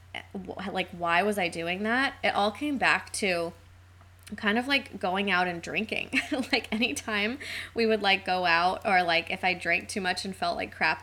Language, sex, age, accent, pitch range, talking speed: English, female, 20-39, American, 170-210 Hz, 195 wpm